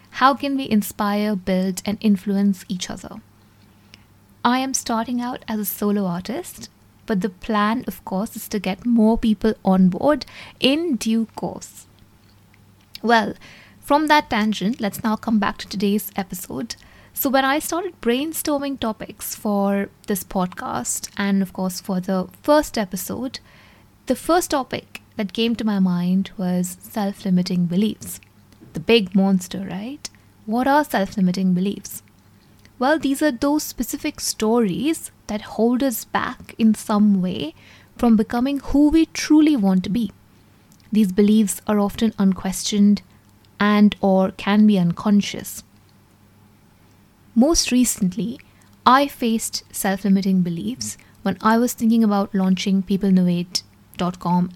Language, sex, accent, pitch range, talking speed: English, female, Indian, 185-230 Hz, 135 wpm